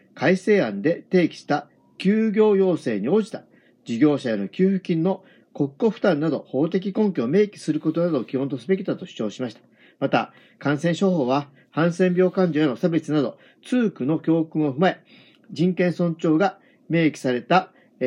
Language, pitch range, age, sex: Japanese, 145-195 Hz, 40-59, male